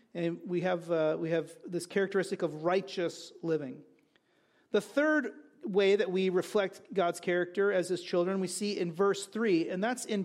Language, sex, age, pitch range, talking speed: English, male, 40-59, 185-240 Hz, 175 wpm